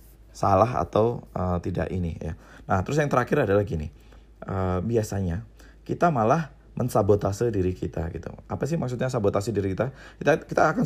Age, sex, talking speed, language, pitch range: 20-39, male, 160 wpm, Indonesian, 95-130 Hz